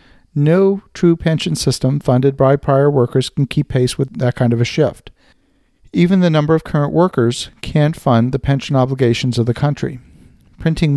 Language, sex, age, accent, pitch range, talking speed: English, male, 50-69, American, 125-155 Hz, 175 wpm